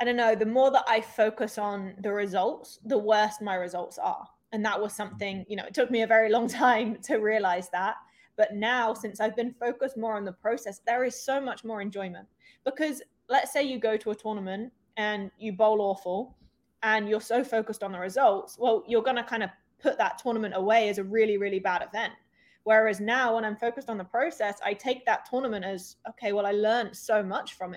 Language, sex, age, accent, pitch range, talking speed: English, female, 20-39, British, 200-230 Hz, 220 wpm